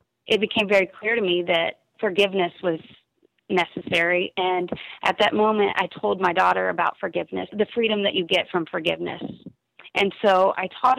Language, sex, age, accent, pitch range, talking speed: English, female, 30-49, American, 180-220 Hz, 170 wpm